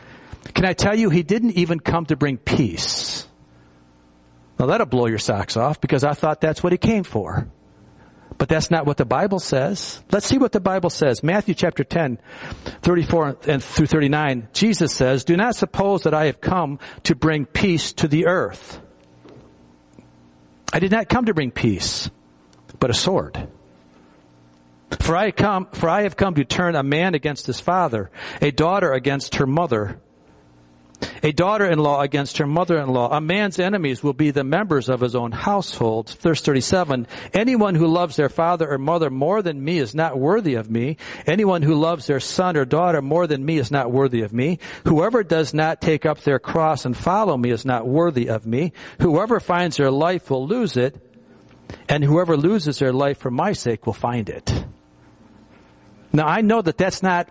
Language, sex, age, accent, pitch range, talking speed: English, male, 50-69, American, 120-175 Hz, 180 wpm